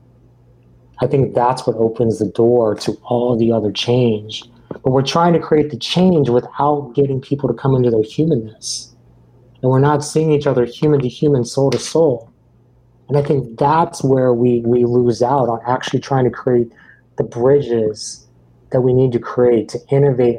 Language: English